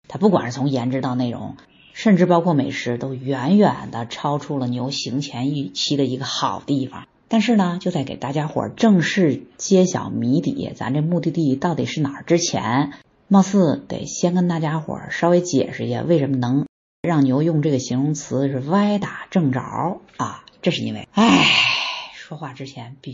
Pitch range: 130-170 Hz